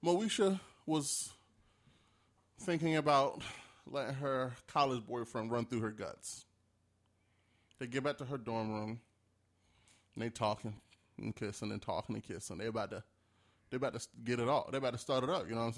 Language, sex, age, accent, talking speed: English, male, 20-39, American, 175 wpm